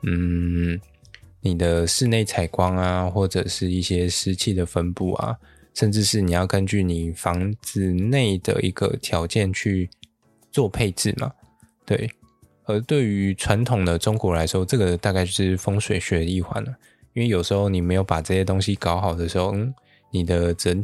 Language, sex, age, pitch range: Chinese, male, 20-39, 90-110 Hz